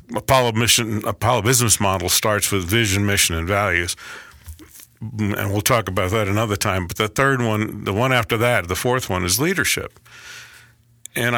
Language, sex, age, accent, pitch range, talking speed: English, male, 50-69, American, 95-115 Hz, 170 wpm